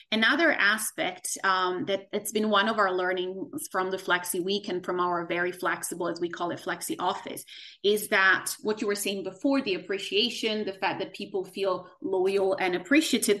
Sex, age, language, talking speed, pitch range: female, 30-49, English, 190 wpm, 190-275 Hz